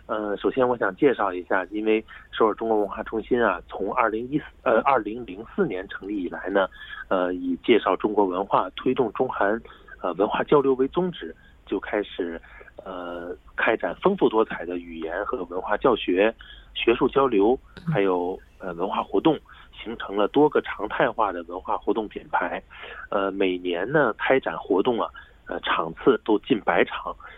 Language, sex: Korean, male